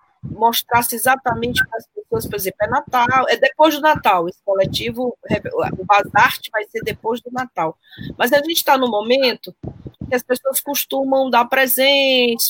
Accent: Brazilian